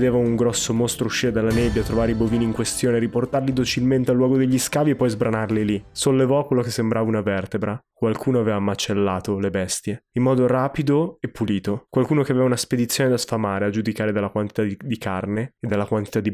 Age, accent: 20-39, native